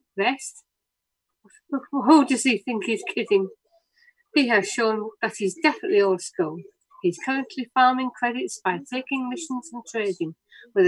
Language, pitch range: English, 205-300 Hz